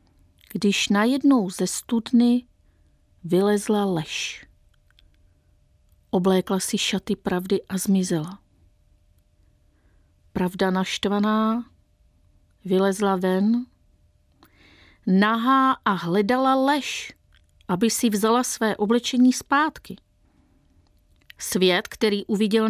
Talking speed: 80 wpm